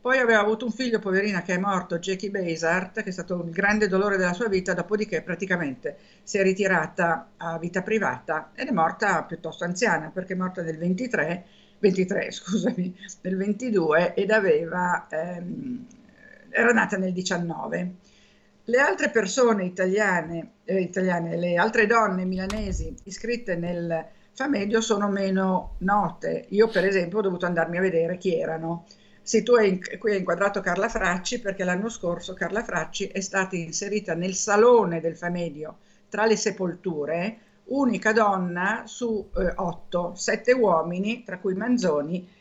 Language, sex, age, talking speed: Italian, female, 50-69, 150 wpm